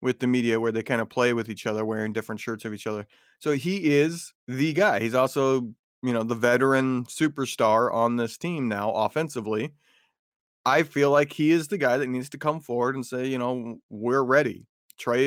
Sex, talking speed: male, 210 wpm